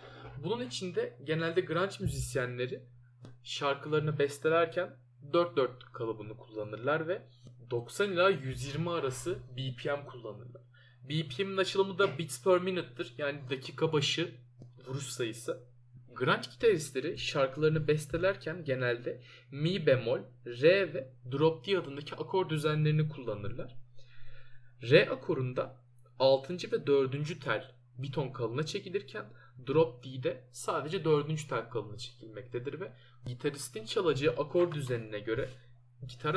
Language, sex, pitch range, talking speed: Turkish, male, 125-160 Hz, 105 wpm